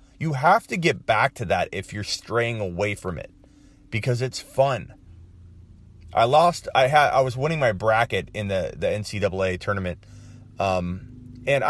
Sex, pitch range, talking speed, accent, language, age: male, 90-115 Hz, 170 wpm, American, English, 30-49